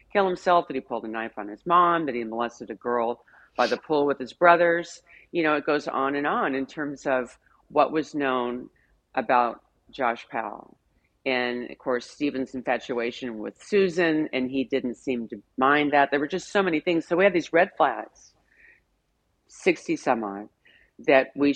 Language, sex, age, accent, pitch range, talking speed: English, female, 40-59, American, 115-155 Hz, 185 wpm